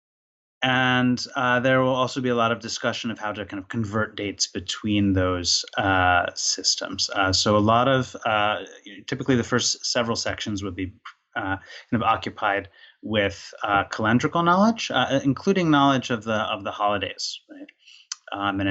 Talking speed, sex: 170 wpm, male